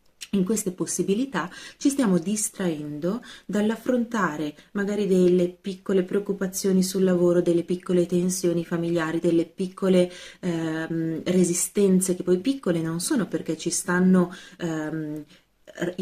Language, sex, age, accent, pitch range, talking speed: Italian, female, 30-49, native, 165-195 Hz, 110 wpm